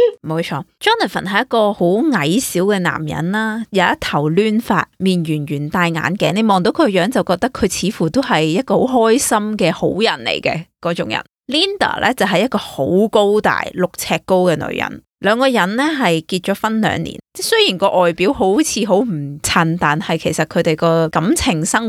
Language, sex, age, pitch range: Chinese, female, 20-39, 165-230 Hz